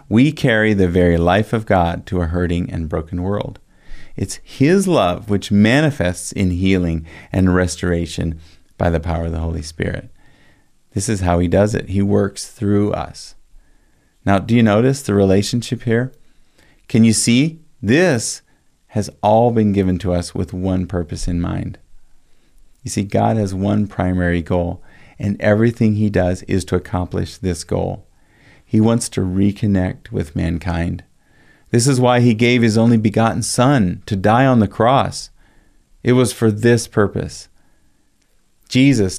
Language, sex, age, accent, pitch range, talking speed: English, male, 40-59, American, 90-110 Hz, 160 wpm